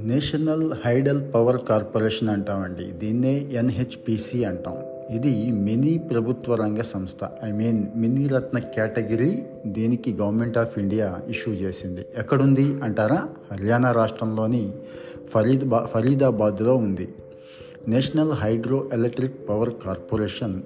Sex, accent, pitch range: male, native, 105-130 Hz